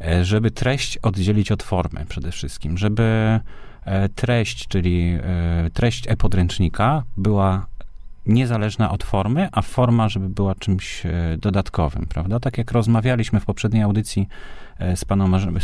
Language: Polish